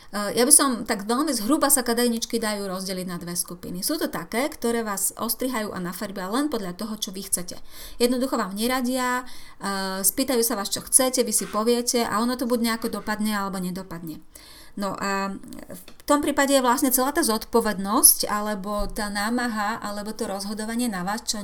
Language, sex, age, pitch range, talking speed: Slovak, female, 30-49, 205-250 Hz, 180 wpm